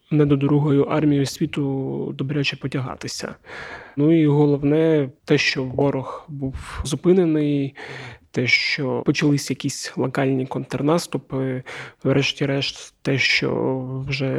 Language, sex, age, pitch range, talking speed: Ukrainian, male, 20-39, 135-150 Hz, 105 wpm